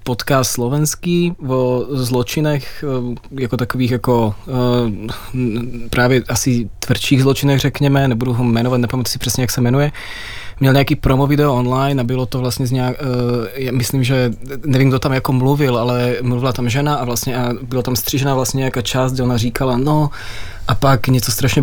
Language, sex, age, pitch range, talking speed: Czech, male, 20-39, 120-140 Hz, 165 wpm